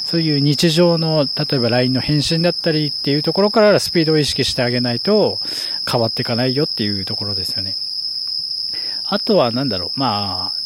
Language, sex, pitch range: Japanese, male, 115-170 Hz